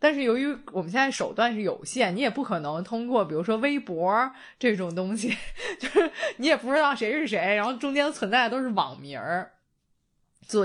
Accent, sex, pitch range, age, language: native, female, 170-240 Hz, 20-39, Chinese